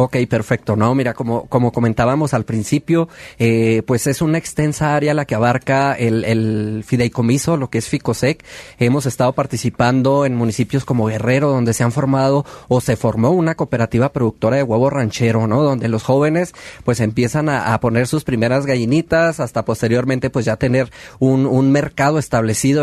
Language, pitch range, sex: Spanish, 120-150 Hz, male